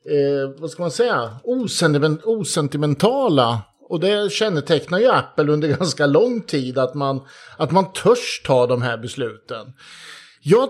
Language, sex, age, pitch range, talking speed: Swedish, male, 50-69, 145-185 Hz, 130 wpm